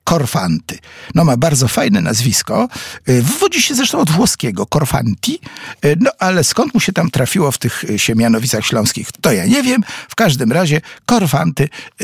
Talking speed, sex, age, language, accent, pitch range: 155 wpm, male, 50-69, Polish, native, 115-185 Hz